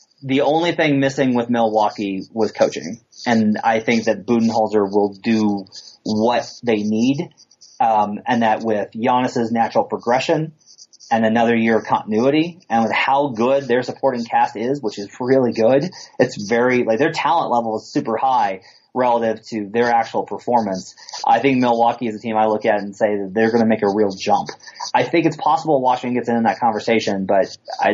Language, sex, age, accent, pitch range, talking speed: English, male, 30-49, American, 110-130 Hz, 190 wpm